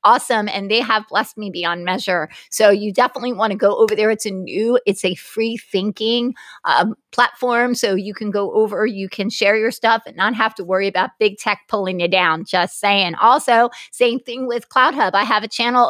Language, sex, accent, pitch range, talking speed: English, female, American, 195-230 Hz, 215 wpm